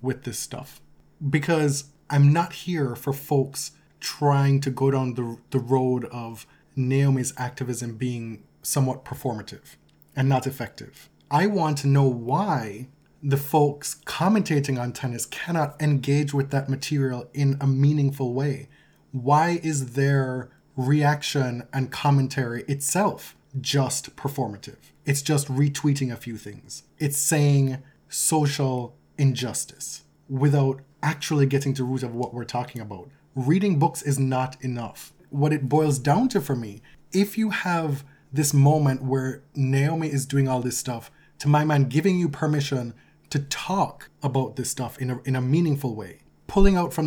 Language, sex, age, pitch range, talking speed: English, male, 20-39, 130-150 Hz, 150 wpm